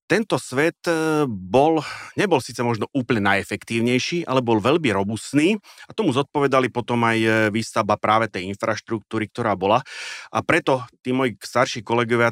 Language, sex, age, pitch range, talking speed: Slovak, male, 30-49, 105-125 Hz, 140 wpm